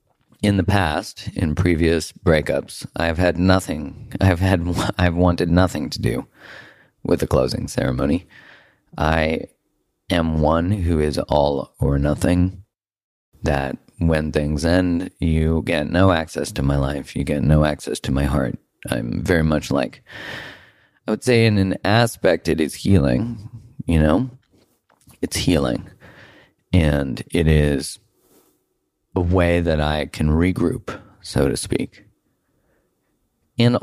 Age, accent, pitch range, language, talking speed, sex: 40-59, American, 75-100 Hz, English, 135 wpm, male